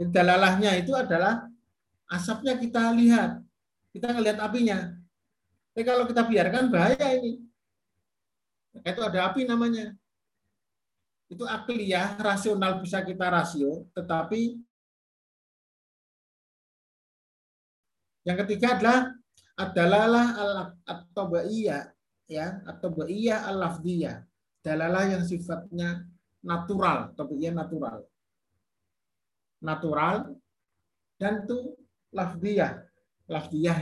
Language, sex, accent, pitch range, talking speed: Indonesian, male, native, 145-220 Hz, 80 wpm